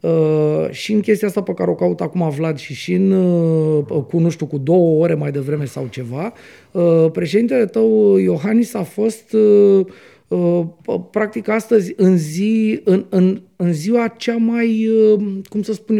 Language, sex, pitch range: Romanian, male, 155-210 Hz